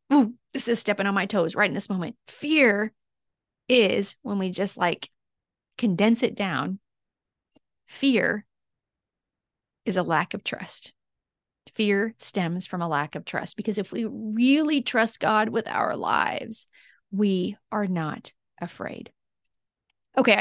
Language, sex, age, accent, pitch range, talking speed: English, female, 30-49, American, 195-250 Hz, 140 wpm